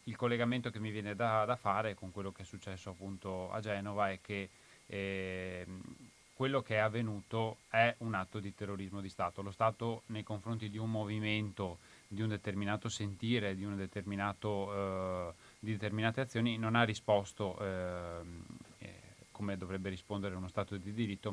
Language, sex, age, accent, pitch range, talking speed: Italian, male, 30-49, native, 95-110 Hz, 165 wpm